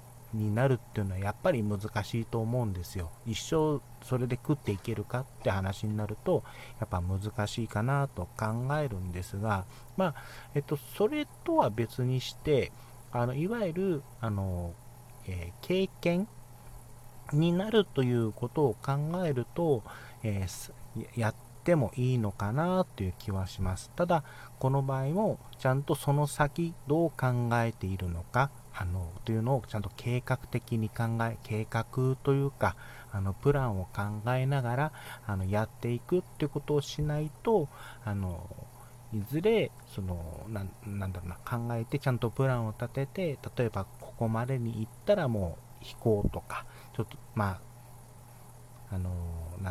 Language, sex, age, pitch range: Japanese, male, 40-59, 105-135 Hz